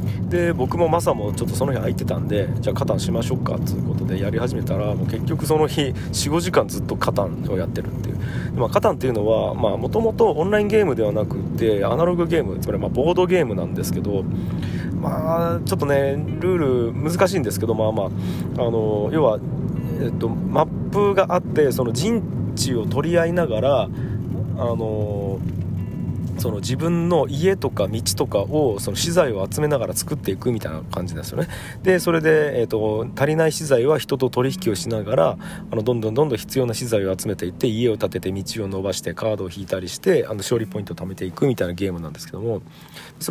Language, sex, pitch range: Japanese, male, 100-160 Hz